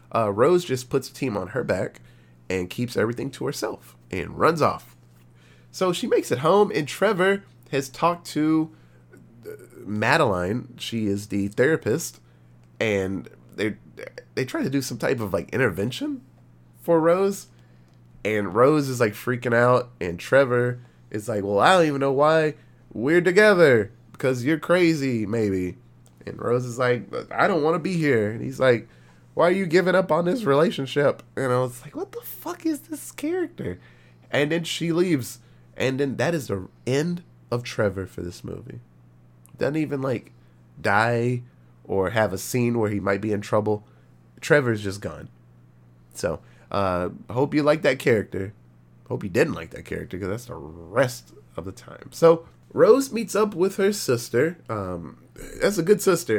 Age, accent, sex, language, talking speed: 20-39, American, male, English, 170 wpm